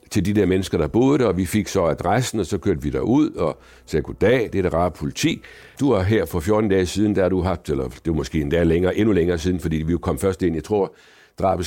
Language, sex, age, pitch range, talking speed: Danish, male, 60-79, 90-110 Hz, 260 wpm